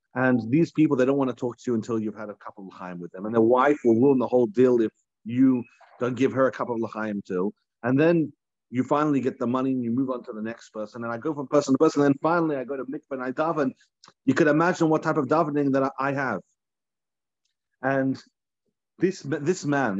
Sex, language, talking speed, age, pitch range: male, English, 245 wpm, 40-59, 115-150 Hz